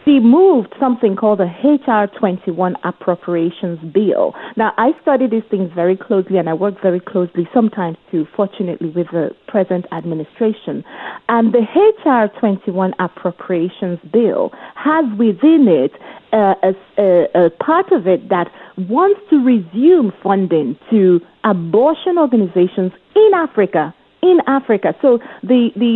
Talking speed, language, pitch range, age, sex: 135 wpm, English, 185-250 Hz, 40-59, female